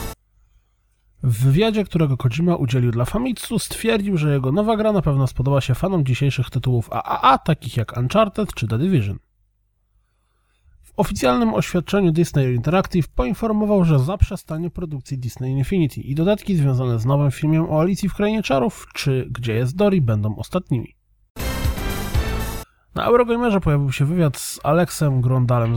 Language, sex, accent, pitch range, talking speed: Polish, male, native, 120-180 Hz, 145 wpm